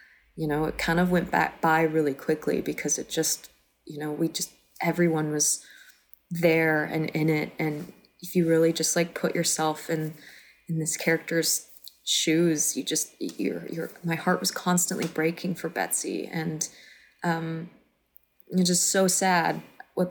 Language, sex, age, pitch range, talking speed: English, female, 20-39, 155-175 Hz, 160 wpm